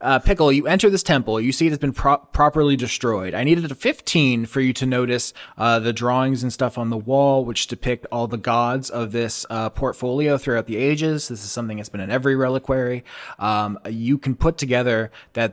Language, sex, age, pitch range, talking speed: English, male, 20-39, 110-130 Hz, 215 wpm